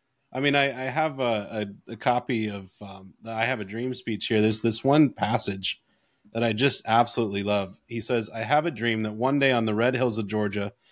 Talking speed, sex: 225 wpm, male